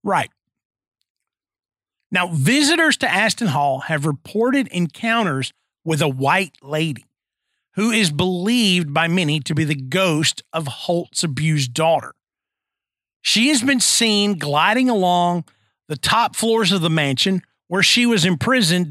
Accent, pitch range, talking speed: American, 155-230 Hz, 135 wpm